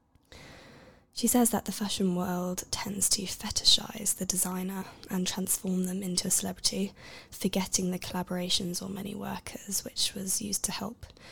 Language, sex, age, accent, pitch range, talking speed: English, female, 10-29, British, 180-195 Hz, 150 wpm